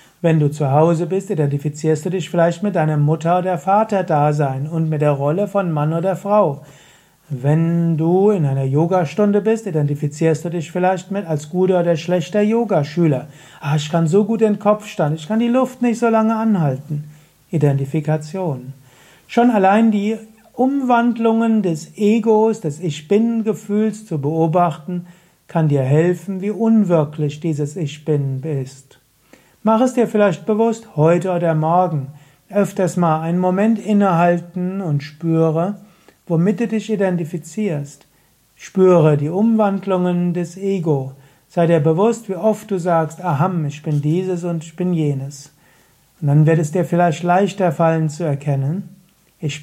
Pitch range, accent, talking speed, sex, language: 150-195 Hz, German, 150 wpm, male, German